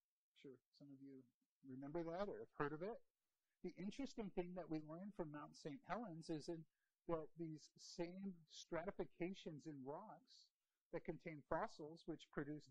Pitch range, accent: 150-185 Hz, American